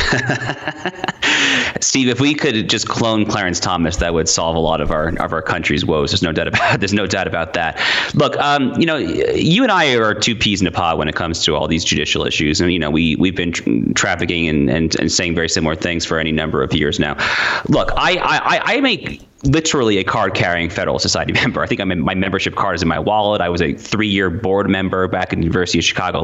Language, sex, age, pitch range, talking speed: English, male, 30-49, 80-100 Hz, 240 wpm